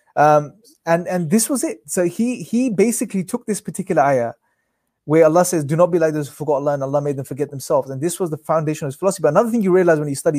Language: English